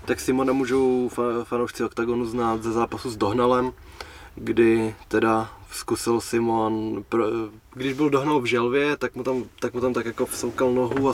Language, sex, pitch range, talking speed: Czech, male, 115-125 Hz, 160 wpm